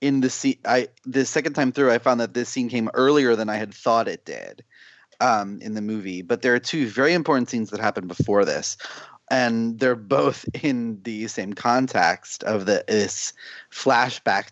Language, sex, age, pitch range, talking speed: English, male, 30-49, 110-130 Hz, 195 wpm